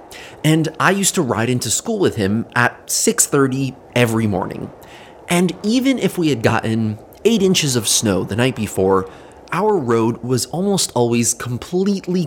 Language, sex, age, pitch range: English, male, 30-49, 110-165 Hz